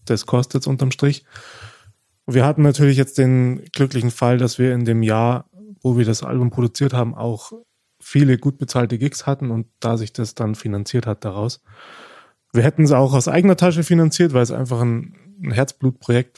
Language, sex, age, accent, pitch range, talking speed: German, male, 30-49, German, 115-140 Hz, 185 wpm